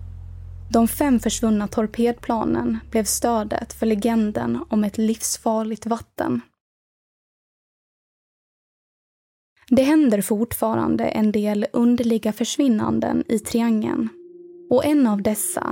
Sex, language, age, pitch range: female, Swedish, 20-39, 215-280 Hz